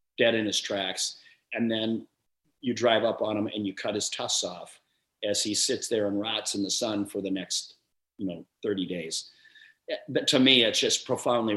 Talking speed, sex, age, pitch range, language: 200 wpm, male, 40-59, 110-145 Hz, English